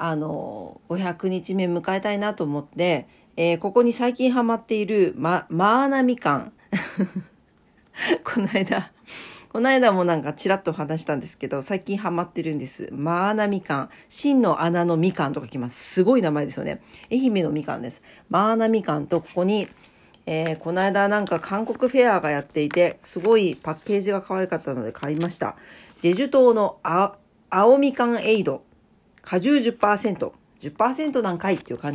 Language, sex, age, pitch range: Japanese, female, 40-59, 160-215 Hz